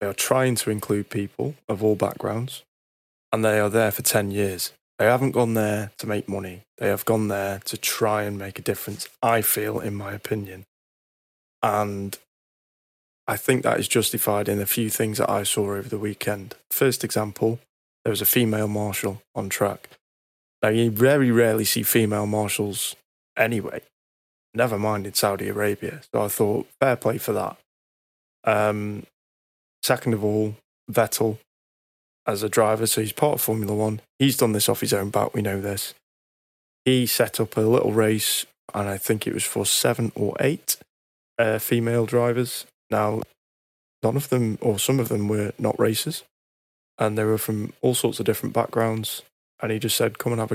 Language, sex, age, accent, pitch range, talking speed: English, male, 20-39, British, 100-115 Hz, 180 wpm